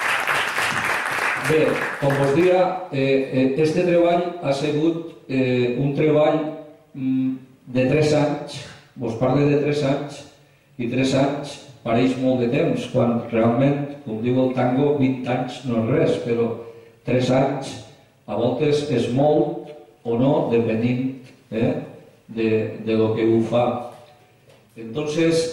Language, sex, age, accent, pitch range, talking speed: Spanish, male, 50-69, Spanish, 115-135 Hz, 130 wpm